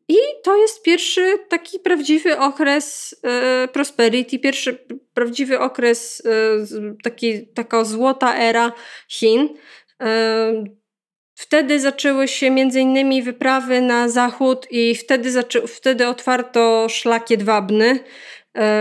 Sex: female